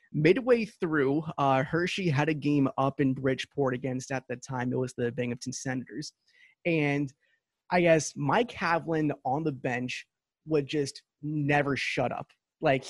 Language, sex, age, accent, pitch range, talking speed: English, male, 20-39, American, 140-180 Hz, 155 wpm